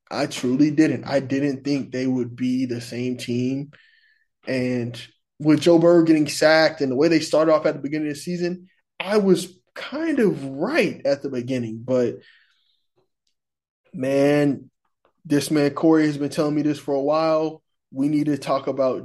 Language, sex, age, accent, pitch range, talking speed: English, male, 20-39, American, 125-155 Hz, 175 wpm